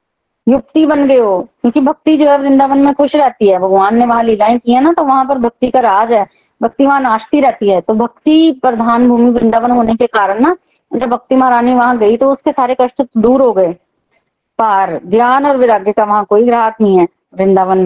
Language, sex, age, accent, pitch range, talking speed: Hindi, female, 20-39, native, 205-255 Hz, 210 wpm